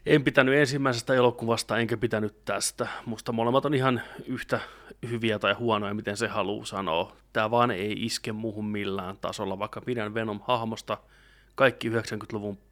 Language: Finnish